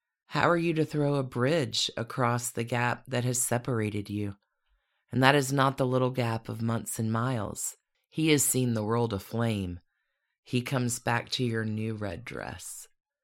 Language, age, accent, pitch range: English, 40-59, American, 115-145 Hz